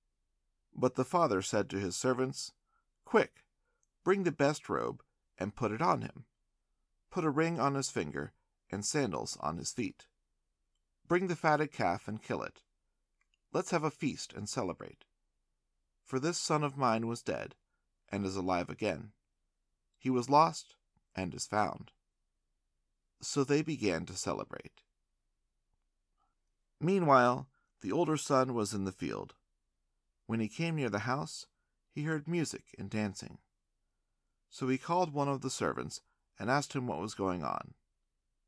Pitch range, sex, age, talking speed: 105-150 Hz, male, 40-59, 150 wpm